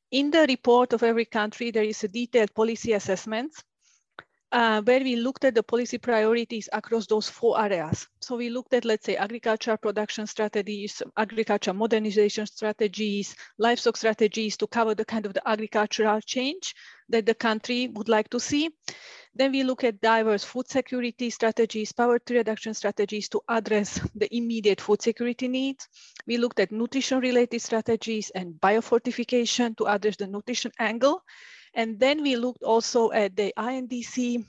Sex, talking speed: female, 160 wpm